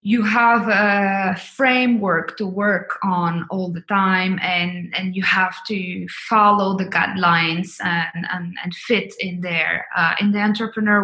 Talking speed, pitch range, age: 150 wpm, 180-215 Hz, 20-39